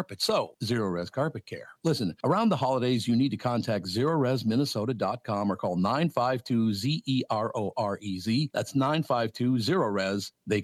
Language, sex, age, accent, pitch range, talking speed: English, male, 50-69, American, 105-140 Hz, 185 wpm